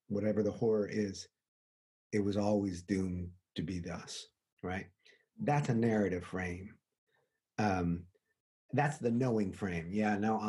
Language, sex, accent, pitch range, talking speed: English, male, American, 100-135 Hz, 130 wpm